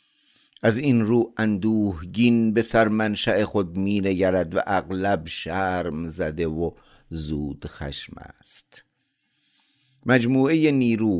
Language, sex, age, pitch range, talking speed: Persian, male, 50-69, 80-115 Hz, 105 wpm